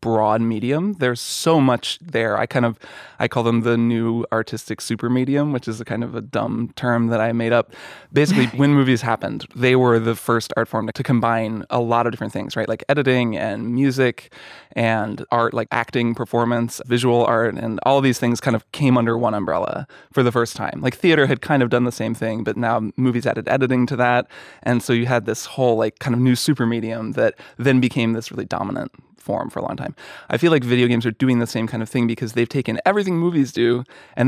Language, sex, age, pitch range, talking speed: English, male, 20-39, 115-130 Hz, 230 wpm